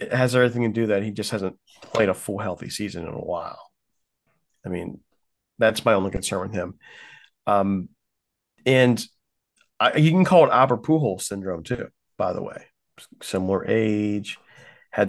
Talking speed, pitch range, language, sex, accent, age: 165 wpm, 95-115 Hz, English, male, American, 40-59